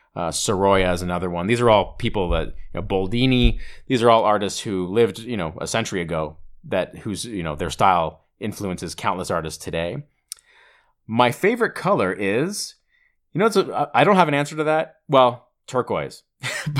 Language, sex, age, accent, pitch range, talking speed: English, male, 30-49, American, 90-125 Hz, 180 wpm